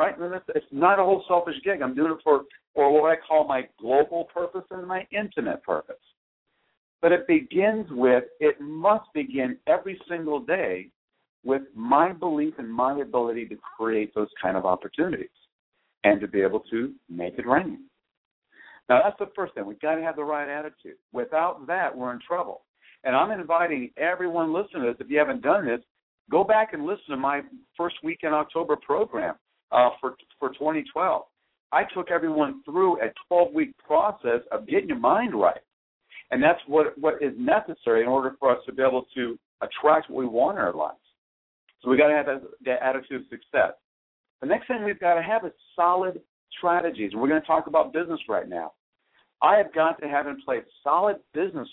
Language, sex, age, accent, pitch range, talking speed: English, male, 60-79, American, 135-185 Hz, 195 wpm